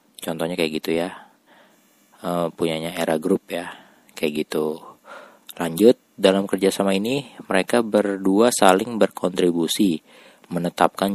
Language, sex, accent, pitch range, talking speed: Indonesian, male, native, 85-100 Hz, 100 wpm